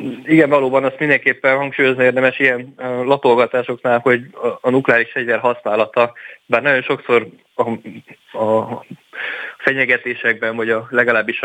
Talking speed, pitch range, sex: 125 wpm, 115-125 Hz, male